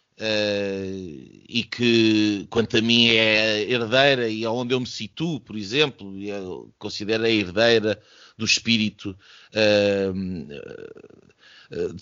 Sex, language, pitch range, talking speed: male, Portuguese, 115-160 Hz, 120 wpm